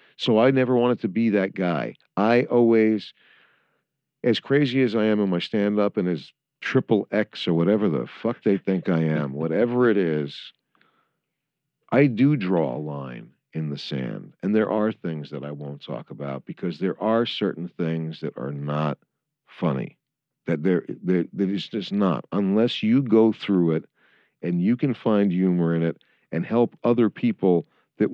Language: English